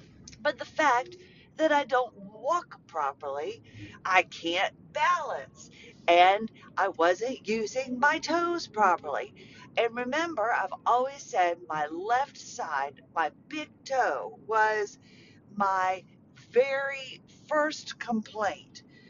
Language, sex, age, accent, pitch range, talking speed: English, female, 50-69, American, 180-260 Hz, 105 wpm